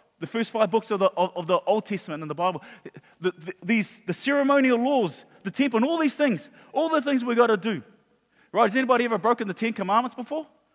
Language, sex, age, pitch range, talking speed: English, male, 30-49, 180-240 Hz, 230 wpm